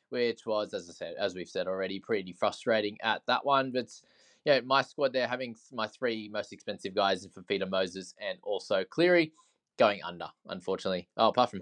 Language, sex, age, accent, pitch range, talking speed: English, male, 20-39, Australian, 95-125 Hz, 195 wpm